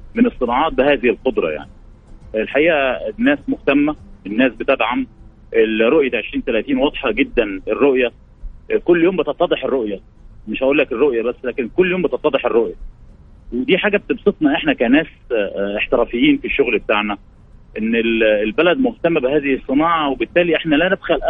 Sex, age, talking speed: male, 30-49, 130 wpm